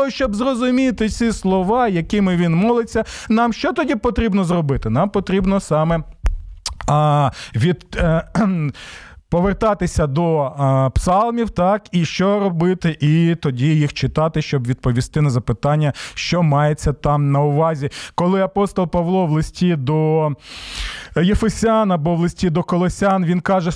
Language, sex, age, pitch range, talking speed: Ukrainian, male, 20-39, 155-220 Hz, 130 wpm